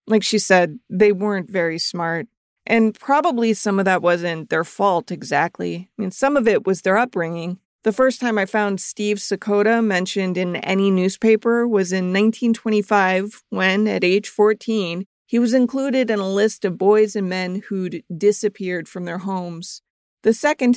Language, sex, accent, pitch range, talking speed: English, female, American, 185-220 Hz, 170 wpm